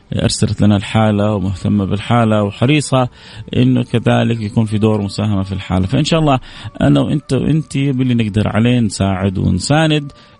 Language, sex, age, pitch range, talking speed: English, male, 30-49, 100-120 Hz, 145 wpm